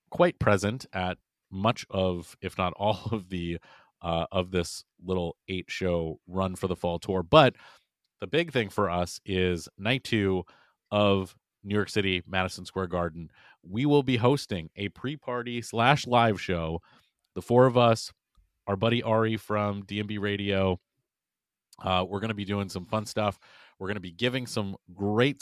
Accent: American